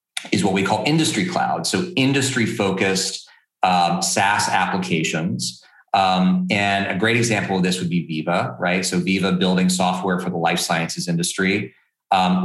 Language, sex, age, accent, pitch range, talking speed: English, male, 30-49, American, 90-125 Hz, 160 wpm